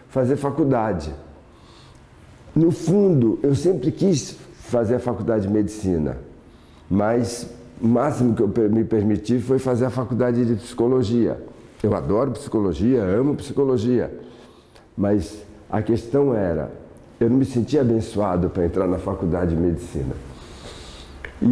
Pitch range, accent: 95-130 Hz, Brazilian